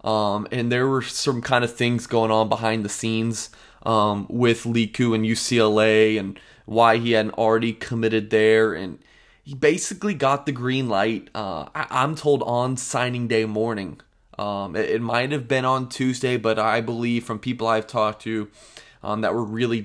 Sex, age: male, 20-39